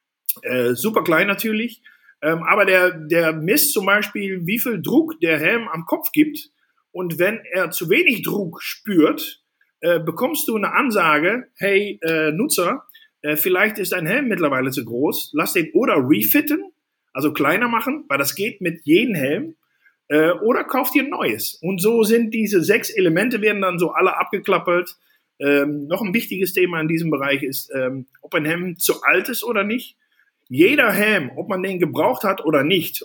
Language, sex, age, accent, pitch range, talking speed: German, male, 50-69, German, 160-250 Hz, 180 wpm